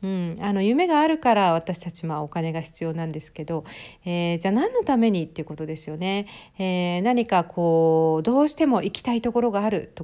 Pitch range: 170-245 Hz